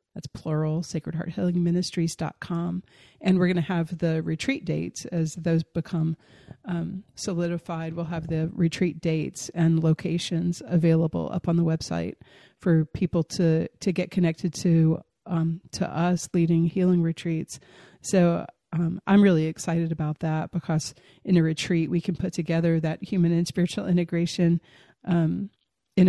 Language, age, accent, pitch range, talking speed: English, 40-59, American, 165-185 Hz, 150 wpm